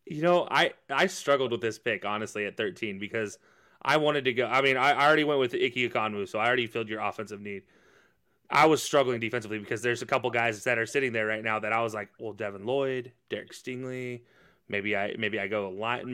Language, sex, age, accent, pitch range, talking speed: English, male, 30-49, American, 120-150 Hz, 225 wpm